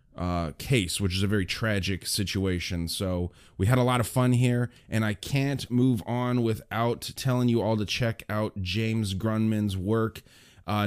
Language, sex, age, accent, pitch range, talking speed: English, male, 30-49, American, 100-130 Hz, 175 wpm